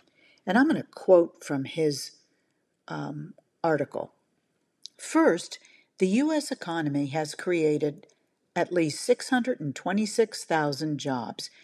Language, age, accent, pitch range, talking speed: English, 50-69, American, 155-225 Hz, 100 wpm